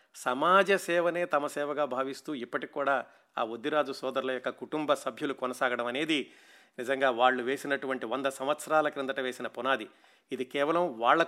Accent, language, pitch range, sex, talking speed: native, Telugu, 130-165 Hz, male, 140 wpm